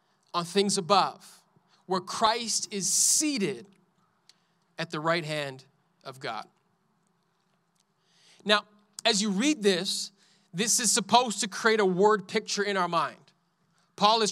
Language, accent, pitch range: English, American, 190-235 Hz